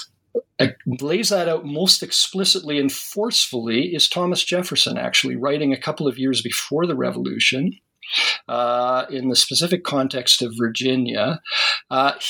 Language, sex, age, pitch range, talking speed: English, male, 50-69, 125-170 Hz, 130 wpm